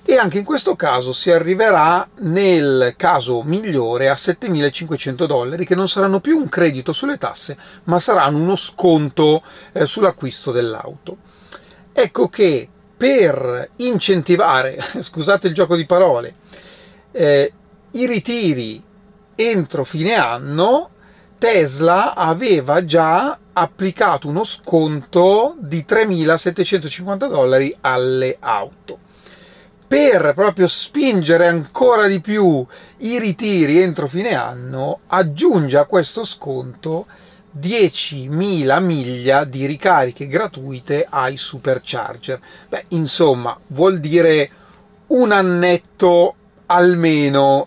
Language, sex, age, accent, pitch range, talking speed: Italian, male, 40-59, native, 145-195 Hz, 105 wpm